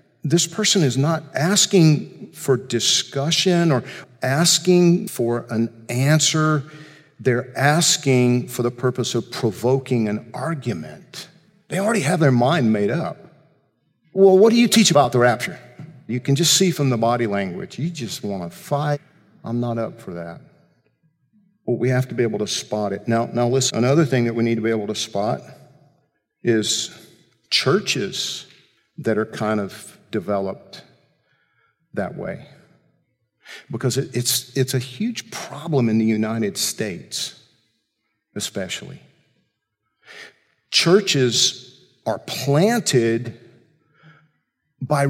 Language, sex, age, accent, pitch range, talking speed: English, male, 50-69, American, 120-160 Hz, 135 wpm